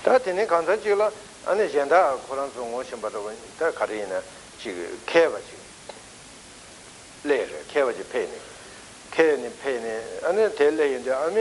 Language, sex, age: Italian, male, 60-79